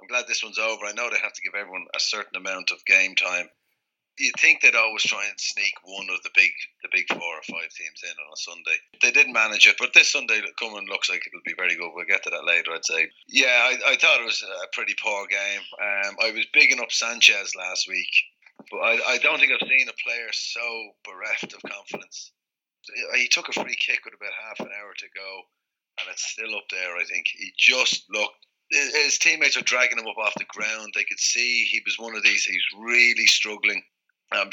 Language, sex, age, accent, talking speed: English, male, 30-49, Irish, 230 wpm